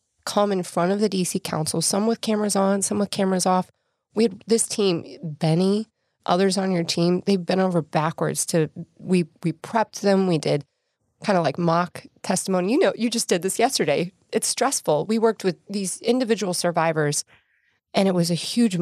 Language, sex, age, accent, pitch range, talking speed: English, female, 20-39, American, 165-205 Hz, 190 wpm